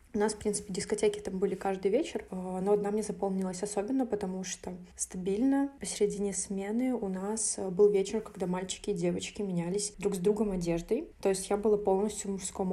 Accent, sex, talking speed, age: native, female, 185 wpm, 20-39